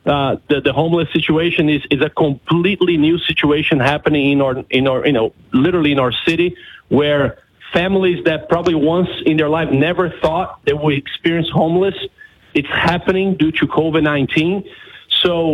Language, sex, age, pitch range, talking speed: English, male, 40-59, 150-185 Hz, 160 wpm